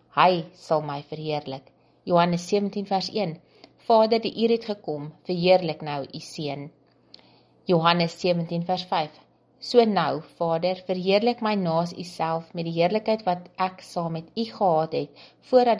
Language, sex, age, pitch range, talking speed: English, female, 30-49, 155-200 Hz, 150 wpm